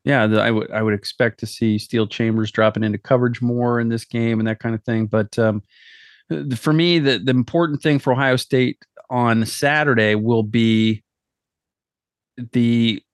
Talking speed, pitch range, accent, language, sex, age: 185 wpm, 110-130 Hz, American, English, male, 30-49